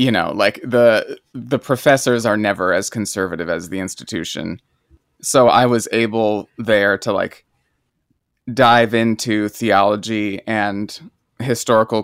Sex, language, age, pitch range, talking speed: male, English, 20-39, 105-120 Hz, 125 wpm